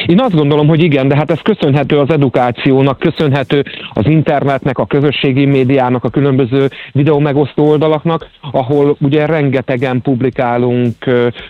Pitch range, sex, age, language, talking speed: 120-140 Hz, male, 40-59, Hungarian, 135 wpm